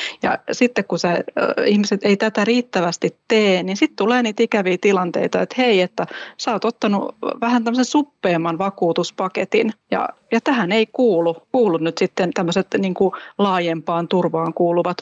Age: 30-49